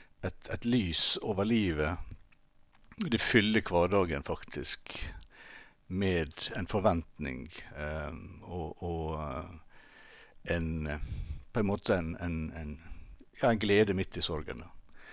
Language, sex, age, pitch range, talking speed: English, male, 60-79, 80-105 Hz, 95 wpm